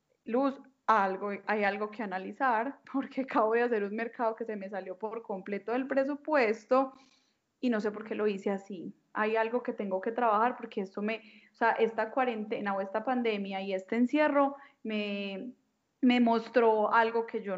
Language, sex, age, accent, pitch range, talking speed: Spanish, female, 10-29, Colombian, 205-250 Hz, 180 wpm